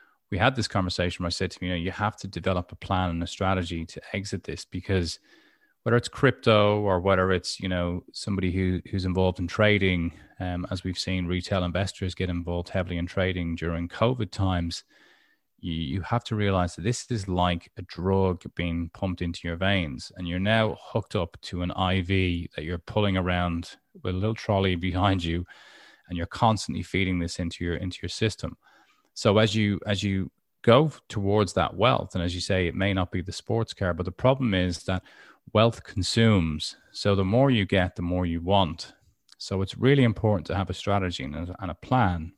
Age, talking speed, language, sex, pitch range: 20-39, 205 wpm, English, male, 90-100 Hz